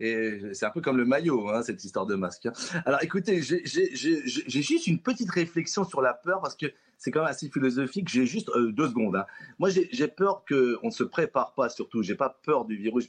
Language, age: French, 40-59